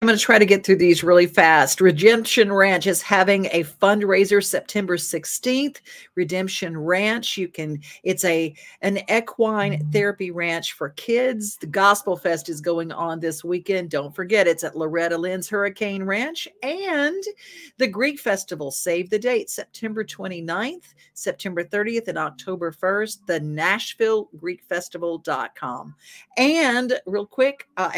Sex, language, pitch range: female, English, 175-225 Hz